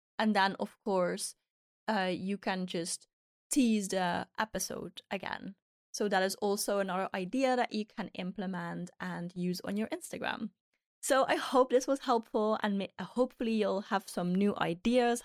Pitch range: 190-245 Hz